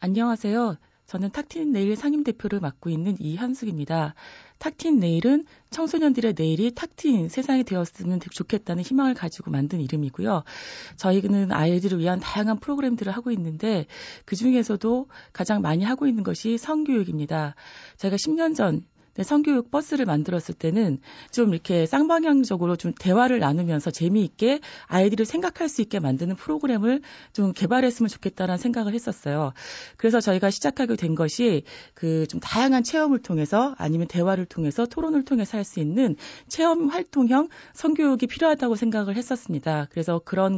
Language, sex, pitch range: Korean, female, 175-260 Hz